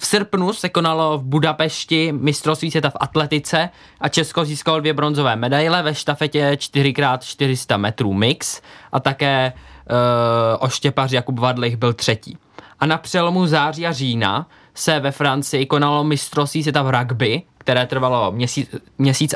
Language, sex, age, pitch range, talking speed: Czech, male, 20-39, 130-155 Hz, 145 wpm